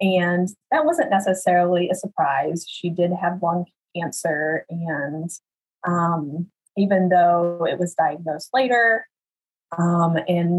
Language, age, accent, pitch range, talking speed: English, 30-49, American, 165-190 Hz, 120 wpm